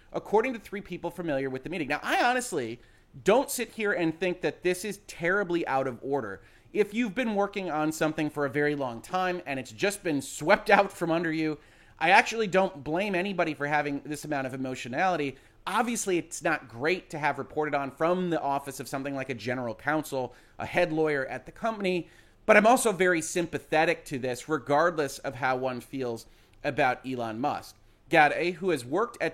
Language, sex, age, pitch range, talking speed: English, male, 30-49, 135-180 Hz, 200 wpm